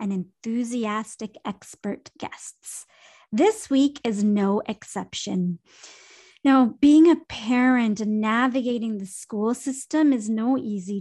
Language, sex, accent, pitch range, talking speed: English, female, American, 215-300 Hz, 115 wpm